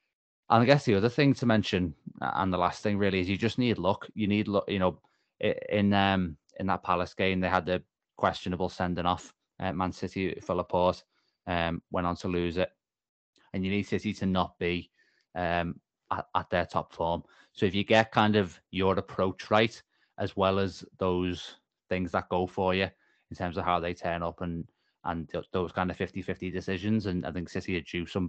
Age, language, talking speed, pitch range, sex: 20-39, English, 210 wpm, 90-100 Hz, male